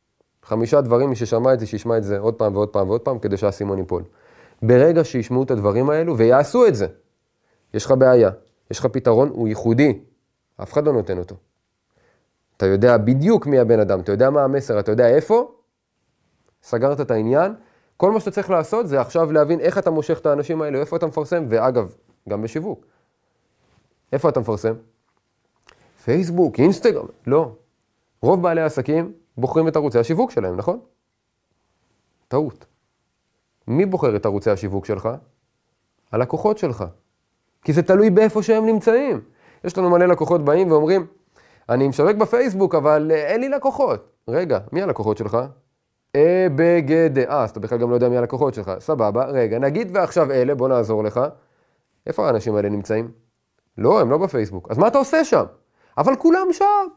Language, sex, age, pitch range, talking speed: Hebrew, male, 30-49, 115-175 Hz, 160 wpm